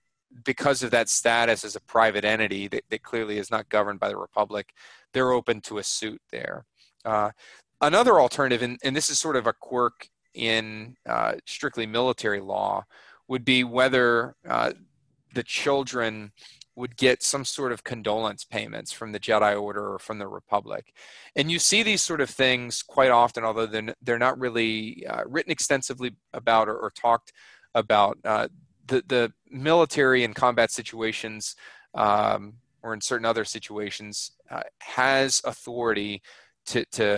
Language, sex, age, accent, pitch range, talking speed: English, male, 30-49, American, 110-130 Hz, 160 wpm